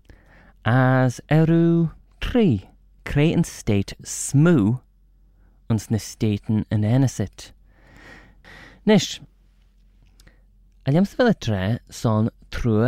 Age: 30-49